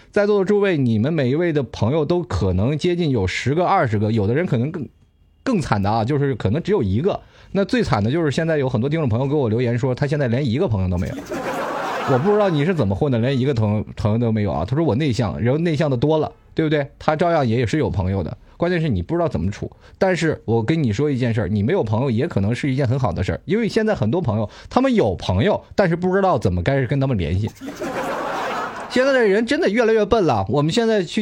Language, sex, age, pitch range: Chinese, male, 20-39, 115-180 Hz